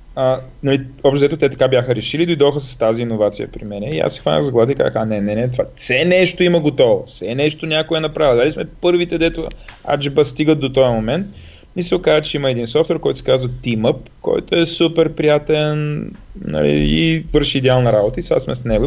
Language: Bulgarian